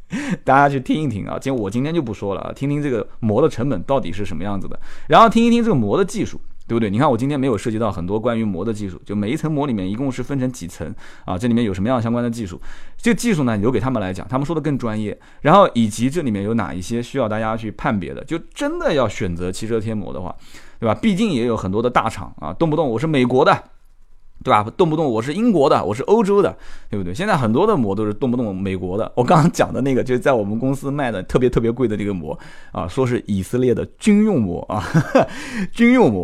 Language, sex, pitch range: Chinese, male, 105-160 Hz